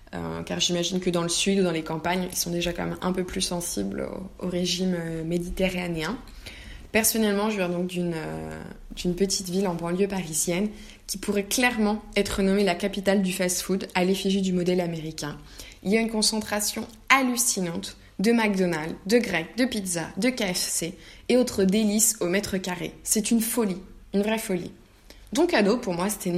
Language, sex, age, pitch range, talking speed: French, female, 20-39, 175-210 Hz, 190 wpm